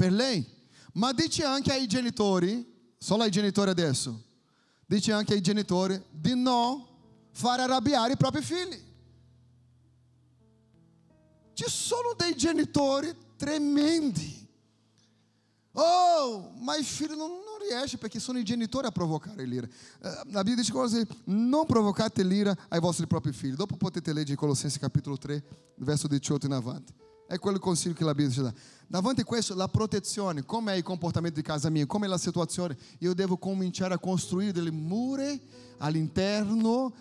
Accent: Brazilian